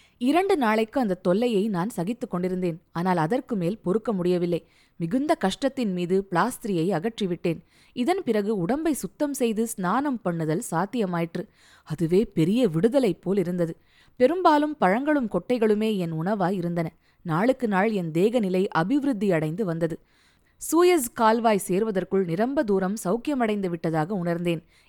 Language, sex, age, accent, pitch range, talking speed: Tamil, female, 20-39, native, 175-245 Hz, 110 wpm